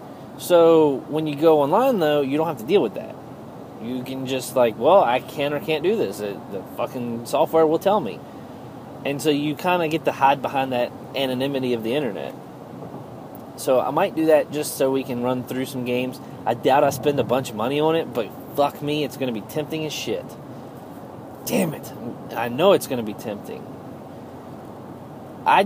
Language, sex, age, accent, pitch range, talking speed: English, male, 30-49, American, 130-160 Hz, 205 wpm